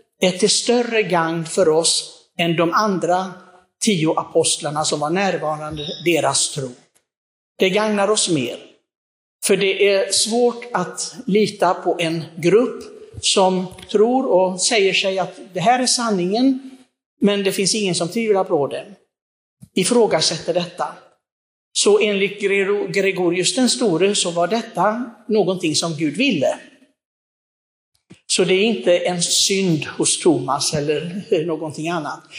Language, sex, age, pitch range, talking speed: Swedish, male, 60-79, 170-215 Hz, 130 wpm